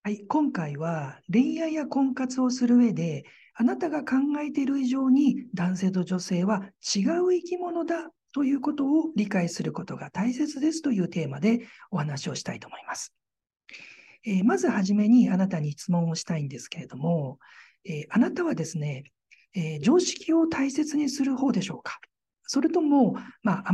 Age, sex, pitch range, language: 50-69, male, 180-275 Hz, Japanese